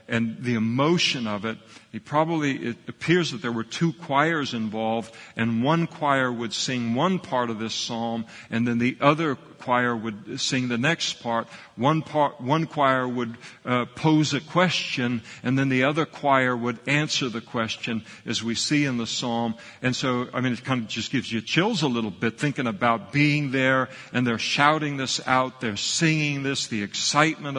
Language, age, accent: English, 50-69, American